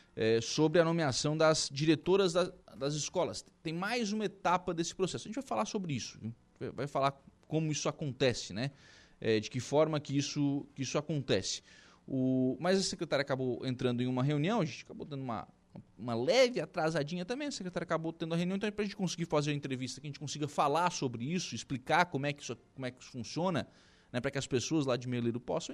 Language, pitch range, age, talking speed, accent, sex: Portuguese, 125-175 Hz, 20-39, 220 wpm, Brazilian, male